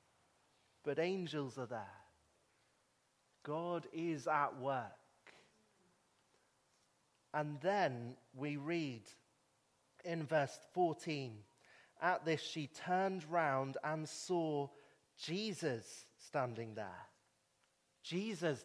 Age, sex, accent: 30-49, male, British